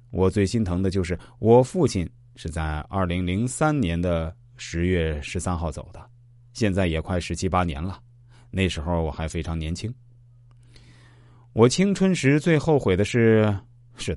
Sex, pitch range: male, 90-120 Hz